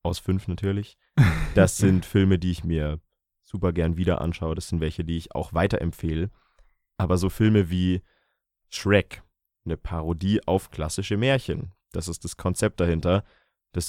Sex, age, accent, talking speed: male, 20-39, German, 155 wpm